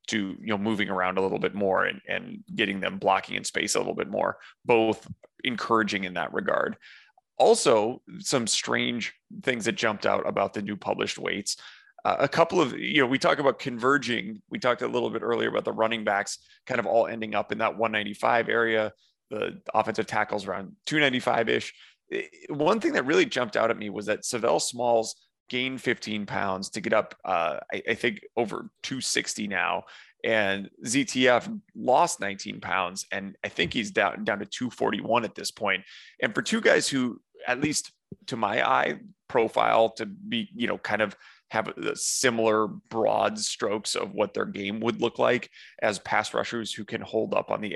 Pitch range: 105-130 Hz